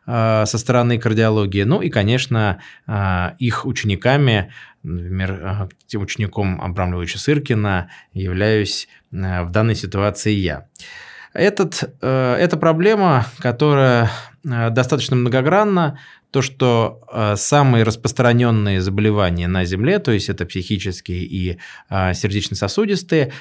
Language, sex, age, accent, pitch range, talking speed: Russian, male, 20-39, native, 95-130 Hz, 90 wpm